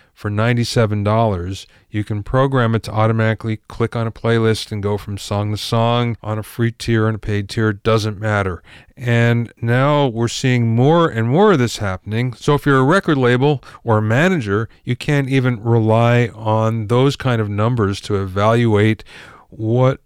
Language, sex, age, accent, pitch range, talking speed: English, male, 40-59, American, 105-130 Hz, 180 wpm